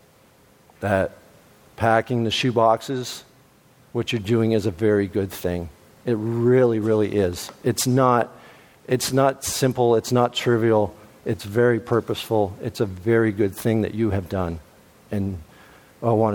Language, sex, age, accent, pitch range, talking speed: English, male, 50-69, American, 110-125 Hz, 145 wpm